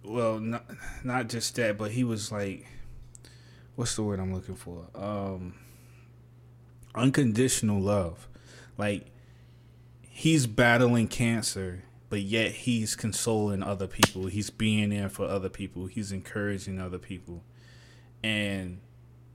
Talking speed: 120 wpm